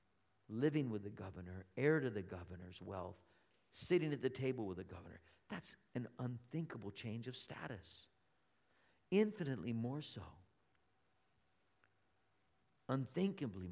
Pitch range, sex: 90-120 Hz, male